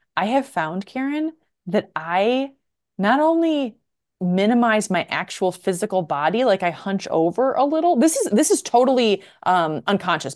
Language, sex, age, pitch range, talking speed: English, female, 20-39, 170-240 Hz, 150 wpm